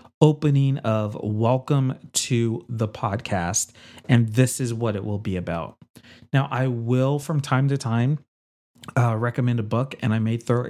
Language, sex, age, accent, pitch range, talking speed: English, male, 30-49, American, 110-135 Hz, 165 wpm